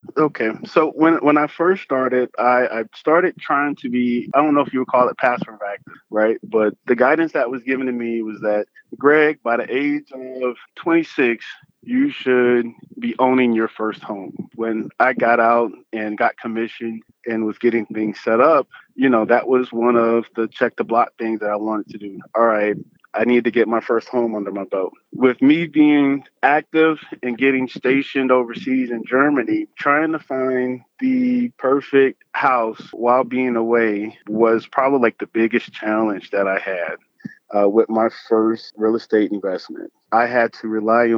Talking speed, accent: 185 wpm, American